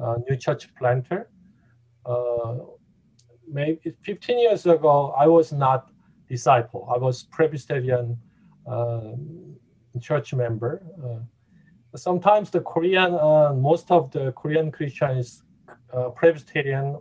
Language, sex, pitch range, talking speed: English, male, 120-160 Hz, 115 wpm